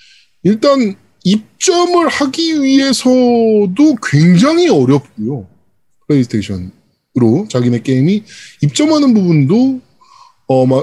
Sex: male